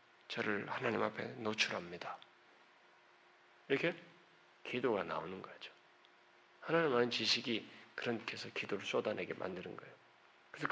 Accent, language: native, Korean